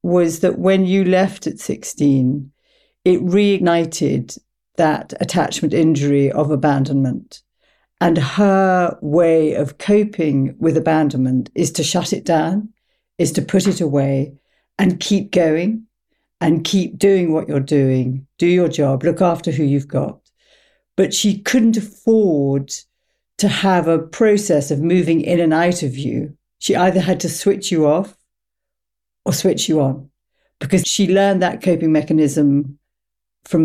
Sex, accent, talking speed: female, British, 145 wpm